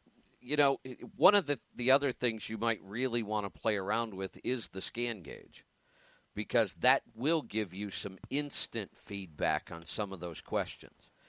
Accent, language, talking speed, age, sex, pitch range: American, English, 175 wpm, 50-69, male, 95-120 Hz